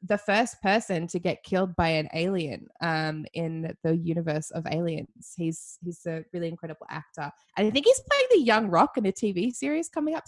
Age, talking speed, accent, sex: 20-39, 205 wpm, Australian, female